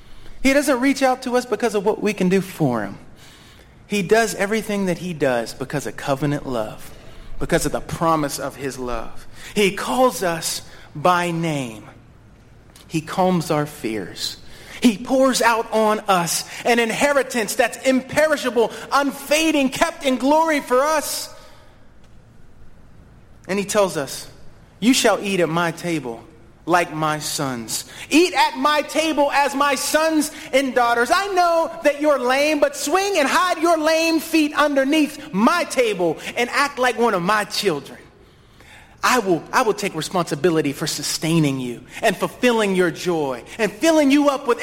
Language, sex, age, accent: English, male, 30-49, American